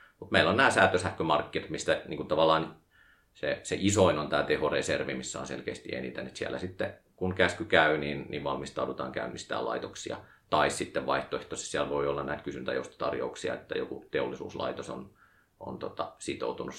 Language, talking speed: Finnish, 155 wpm